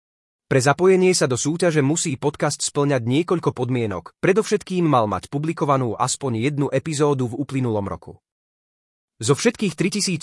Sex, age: male, 30-49